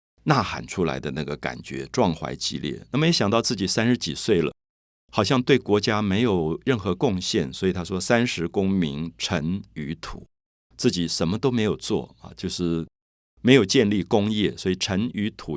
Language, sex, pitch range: Chinese, male, 80-110 Hz